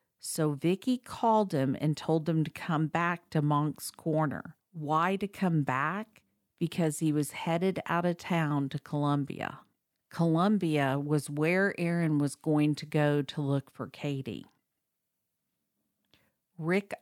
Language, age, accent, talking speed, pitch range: English, 50-69, American, 140 wpm, 145-175 Hz